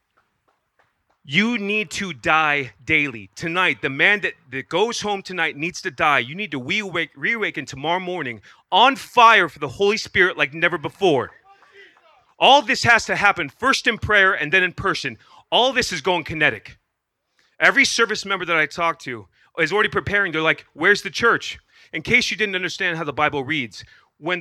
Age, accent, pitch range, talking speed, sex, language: 30-49, American, 155-205 Hz, 180 wpm, male, English